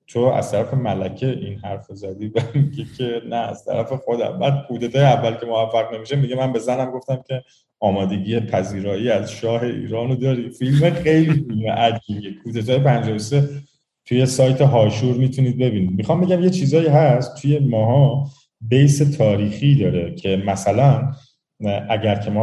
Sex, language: male, Persian